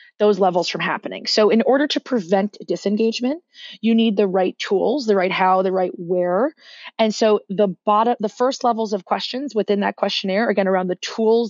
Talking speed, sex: 195 wpm, female